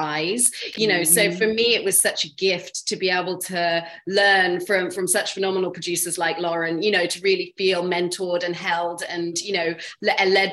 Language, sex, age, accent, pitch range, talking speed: English, female, 30-49, British, 175-205 Hz, 200 wpm